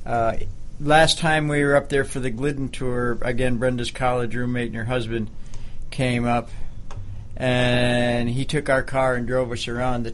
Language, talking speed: English, 180 wpm